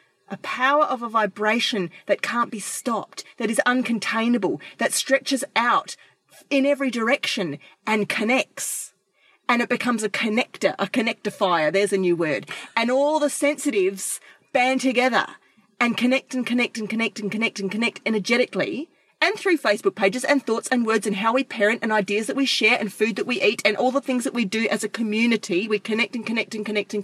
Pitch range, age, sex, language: 210-255 Hz, 30-49, female, English